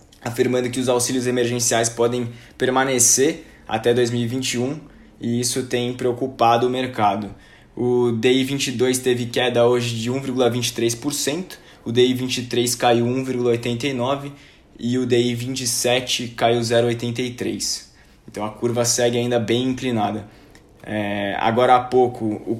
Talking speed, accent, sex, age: 110 wpm, Brazilian, male, 20-39